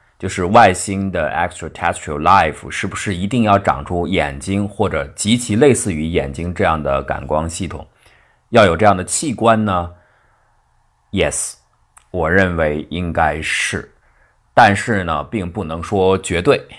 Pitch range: 80-105 Hz